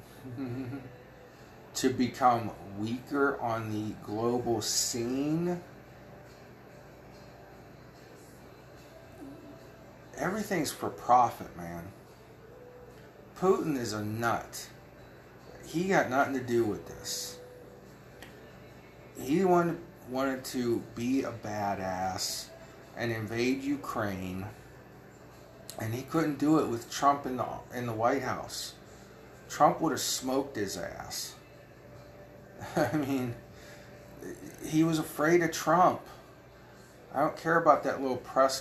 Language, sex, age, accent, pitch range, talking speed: English, male, 40-59, American, 110-135 Hz, 100 wpm